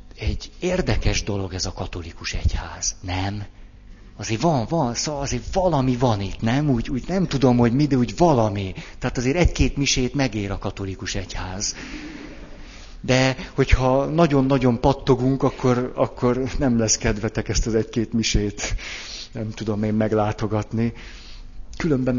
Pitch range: 95-120 Hz